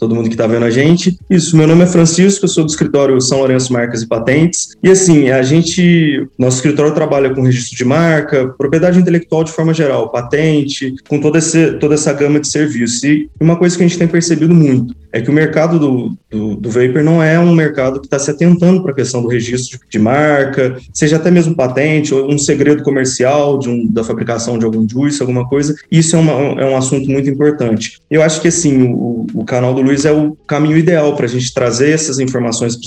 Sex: male